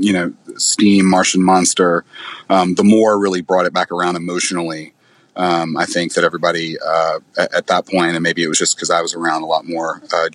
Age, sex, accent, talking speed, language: 30-49, male, American, 215 wpm, English